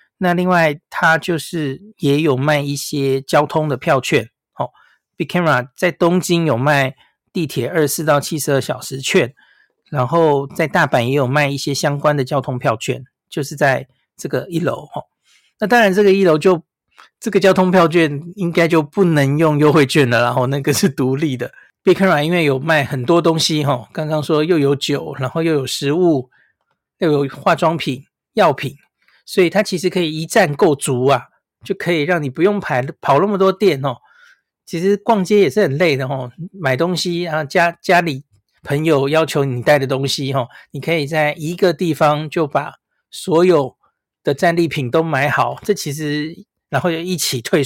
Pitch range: 140-175 Hz